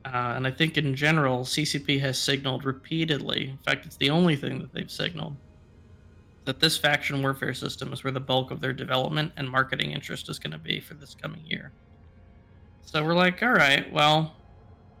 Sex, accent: male, American